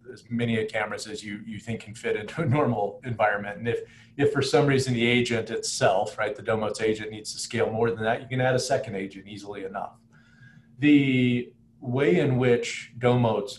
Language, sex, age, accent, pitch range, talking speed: English, male, 40-59, American, 110-130 Hz, 205 wpm